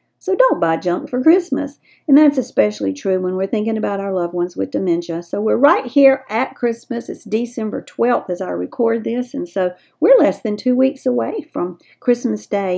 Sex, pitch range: female, 190-250 Hz